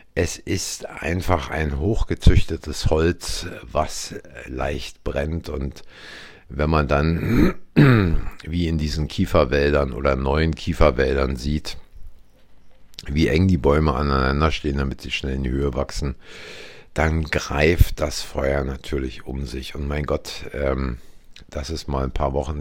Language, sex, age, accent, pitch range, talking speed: German, male, 50-69, German, 70-80 Hz, 135 wpm